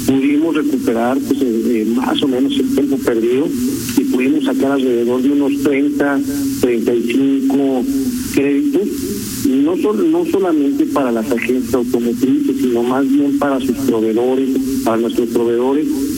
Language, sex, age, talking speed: Spanish, male, 50-69, 135 wpm